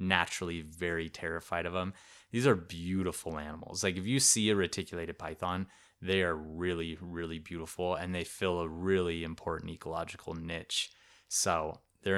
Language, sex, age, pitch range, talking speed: English, male, 20-39, 85-105 Hz, 155 wpm